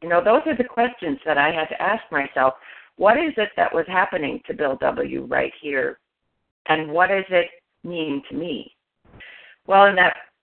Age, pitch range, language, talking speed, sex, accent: 50-69, 160-210 Hz, English, 190 wpm, female, American